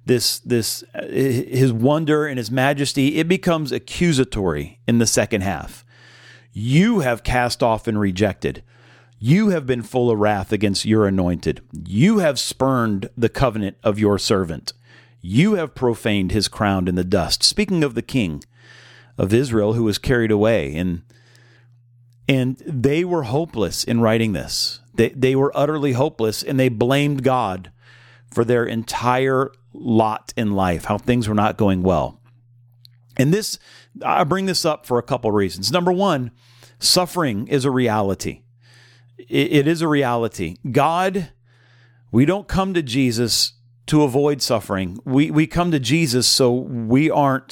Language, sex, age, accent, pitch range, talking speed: English, male, 40-59, American, 110-140 Hz, 155 wpm